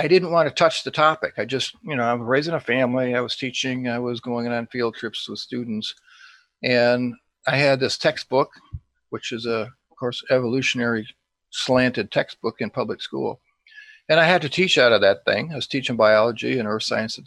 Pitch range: 120-145 Hz